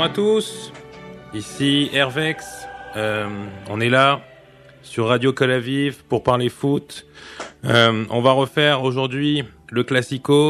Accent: French